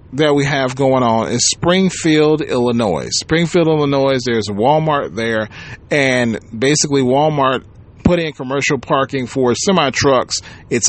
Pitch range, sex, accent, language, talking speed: 130-175 Hz, male, American, English, 125 wpm